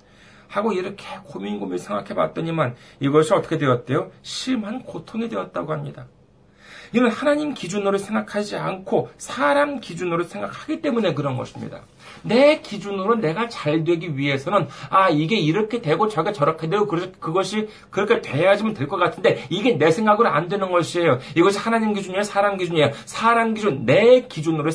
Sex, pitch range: male, 160-235 Hz